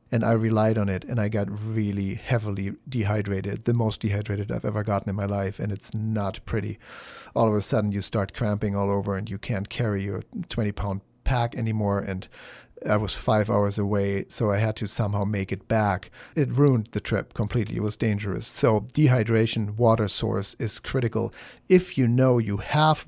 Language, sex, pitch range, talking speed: English, male, 100-120 Hz, 190 wpm